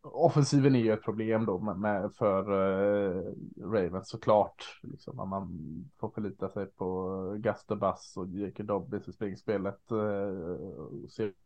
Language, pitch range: Swedish, 105-120 Hz